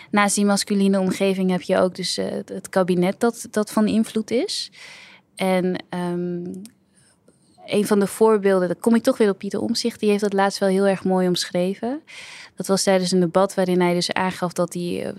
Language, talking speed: Dutch, 190 wpm